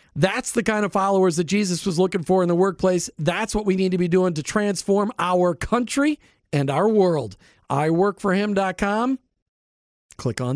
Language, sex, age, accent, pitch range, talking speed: English, male, 40-59, American, 170-230 Hz, 170 wpm